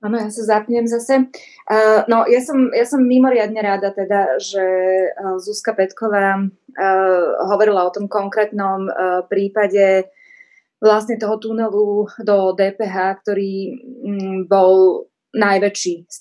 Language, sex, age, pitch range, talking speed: Slovak, female, 20-39, 185-210 Hz, 110 wpm